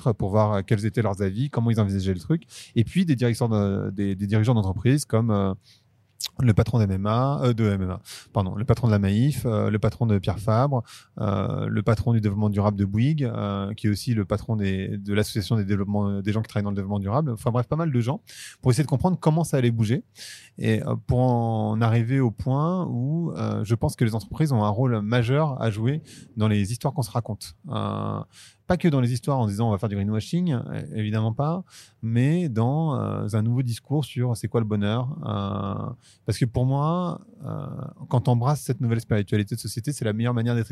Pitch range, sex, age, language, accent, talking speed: 110-135 Hz, male, 30-49, French, French, 220 wpm